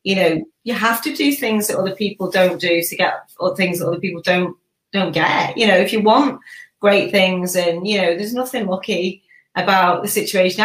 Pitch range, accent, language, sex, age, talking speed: 170-205 Hz, British, English, female, 30-49, 210 wpm